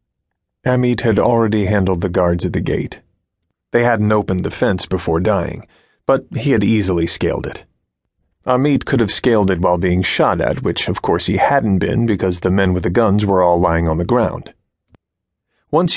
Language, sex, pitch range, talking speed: English, male, 95-115 Hz, 190 wpm